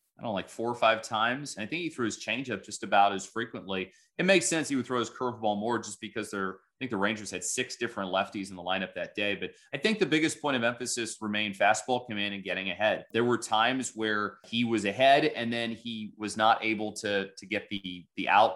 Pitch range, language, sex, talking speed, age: 105-120 Hz, English, male, 250 wpm, 30-49